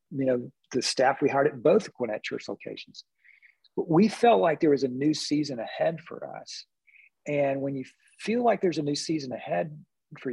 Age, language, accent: 40-59, English, American